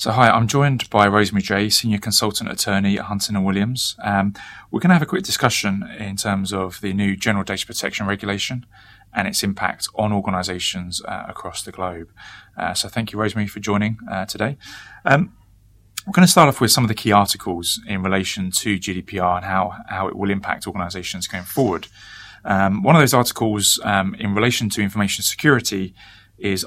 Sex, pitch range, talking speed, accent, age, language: male, 95-110 Hz, 195 wpm, British, 20-39, English